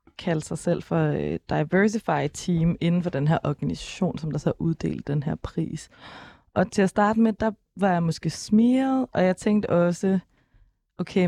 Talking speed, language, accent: 185 wpm, Danish, native